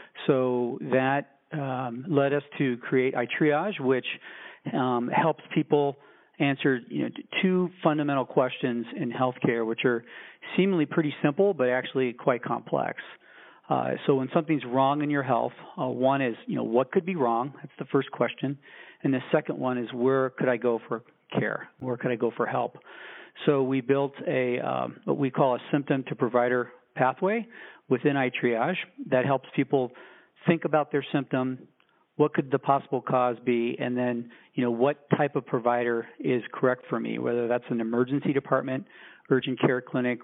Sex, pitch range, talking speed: male, 125-145 Hz, 175 wpm